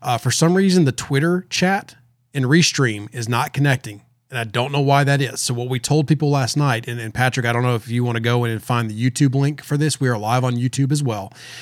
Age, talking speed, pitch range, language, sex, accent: 30-49, 270 wpm, 115-130 Hz, English, male, American